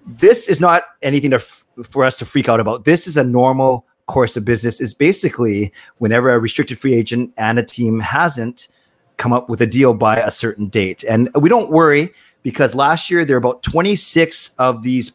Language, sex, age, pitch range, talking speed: English, male, 30-49, 120-155 Hz, 205 wpm